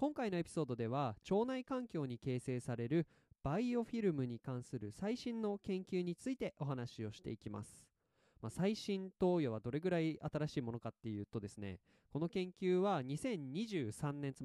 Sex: male